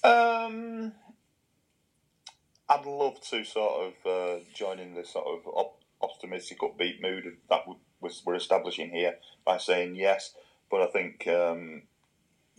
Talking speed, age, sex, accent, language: 130 wpm, 30-49, male, British, English